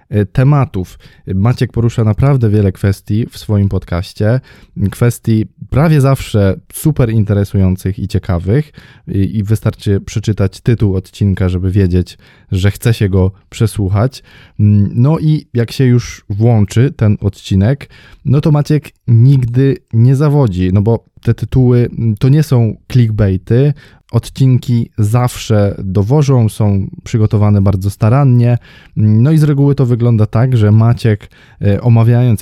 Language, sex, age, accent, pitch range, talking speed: Polish, male, 20-39, native, 100-125 Hz, 125 wpm